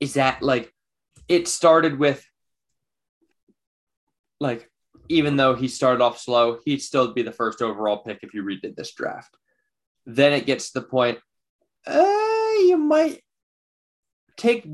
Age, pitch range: 20-39, 110-145 Hz